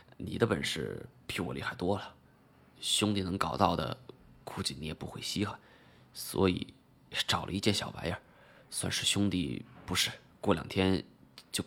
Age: 20-39